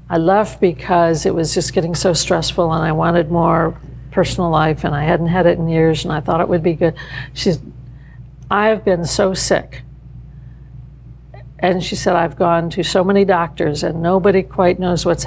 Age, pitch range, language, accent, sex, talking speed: 60-79, 145-185 Hz, English, American, female, 195 wpm